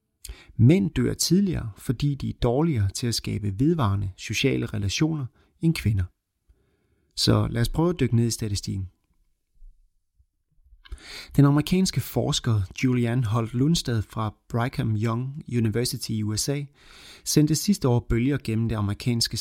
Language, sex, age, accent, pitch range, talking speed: Danish, male, 30-49, native, 105-135 Hz, 135 wpm